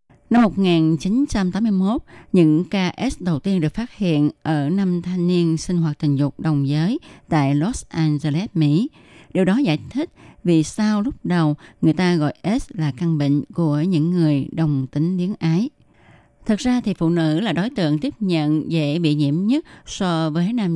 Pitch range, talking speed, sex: 155-190 Hz, 180 wpm, female